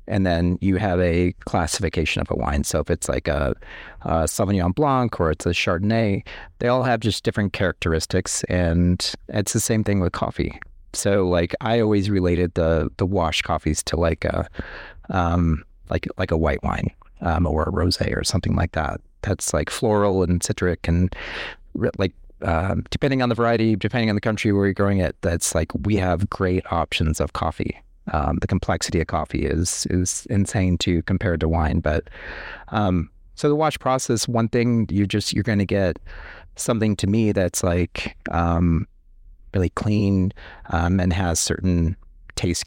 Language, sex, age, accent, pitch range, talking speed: English, male, 30-49, American, 85-105 Hz, 180 wpm